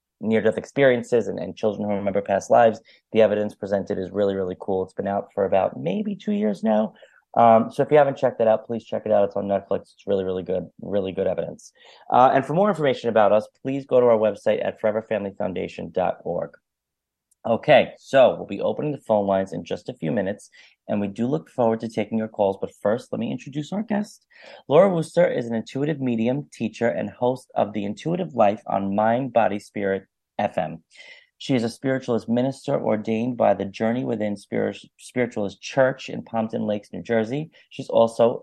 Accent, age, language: American, 30-49, English